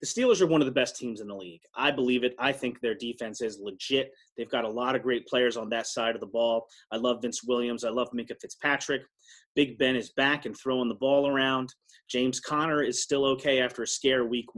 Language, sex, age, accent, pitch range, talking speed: English, male, 30-49, American, 120-150 Hz, 245 wpm